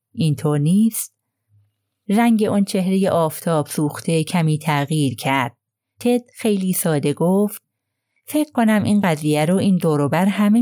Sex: female